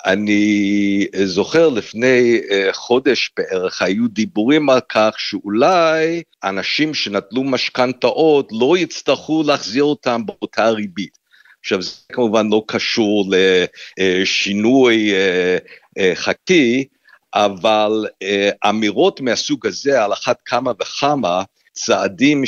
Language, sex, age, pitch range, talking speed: Hebrew, male, 50-69, 100-145 Hz, 95 wpm